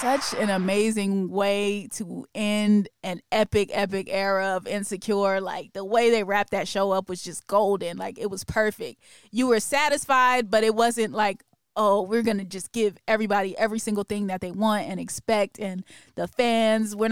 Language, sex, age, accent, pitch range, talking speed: English, female, 20-39, American, 200-235 Hz, 185 wpm